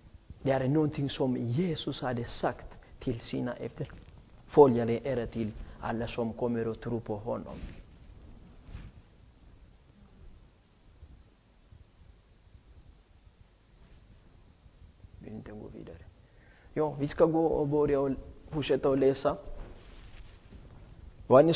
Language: Swedish